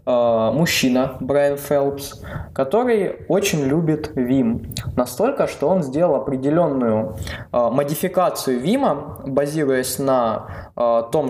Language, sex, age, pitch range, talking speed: Russian, male, 20-39, 125-155 Hz, 90 wpm